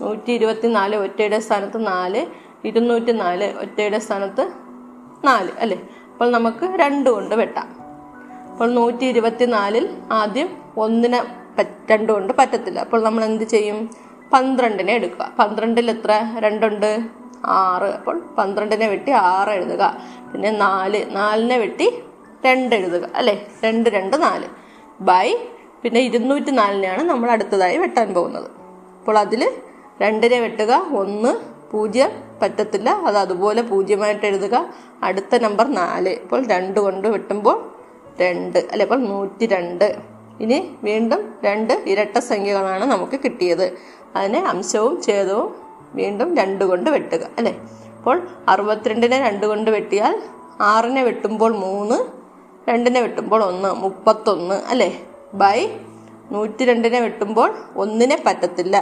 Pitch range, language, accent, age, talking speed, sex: 200-240 Hz, Malayalam, native, 20-39, 115 wpm, female